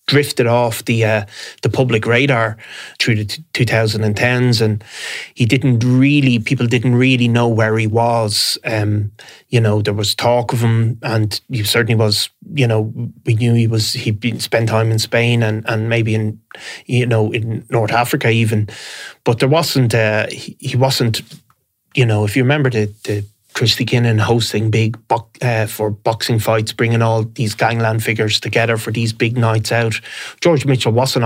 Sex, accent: male, Irish